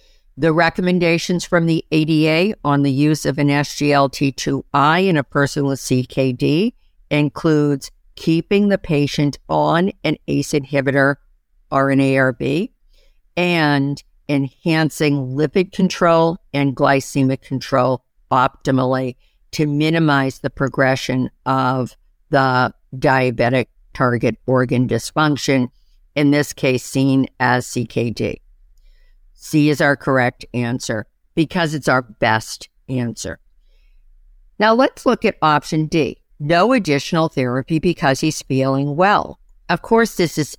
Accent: American